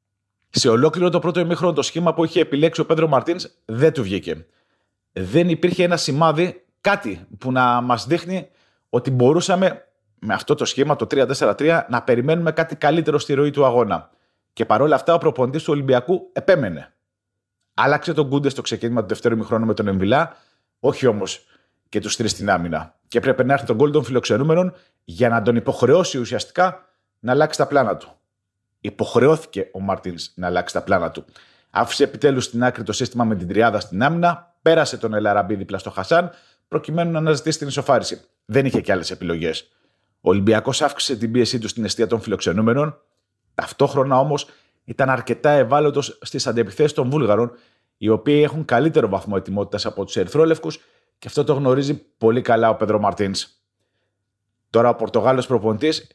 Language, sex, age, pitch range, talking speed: Greek, male, 30-49, 110-155 Hz, 170 wpm